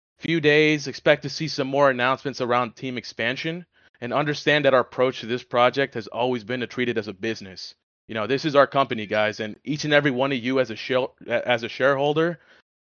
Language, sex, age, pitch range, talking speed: English, male, 20-39, 115-140 Hz, 225 wpm